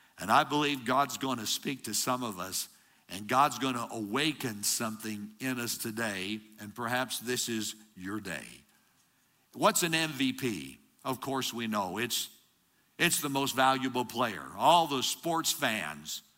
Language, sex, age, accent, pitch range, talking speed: English, male, 60-79, American, 110-140 Hz, 155 wpm